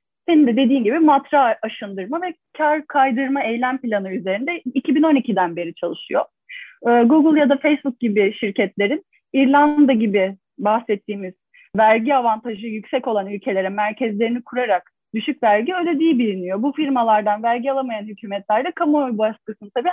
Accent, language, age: native, Turkish, 30-49